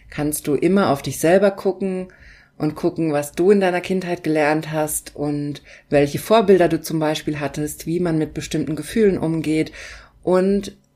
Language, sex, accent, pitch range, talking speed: German, female, German, 150-185 Hz, 165 wpm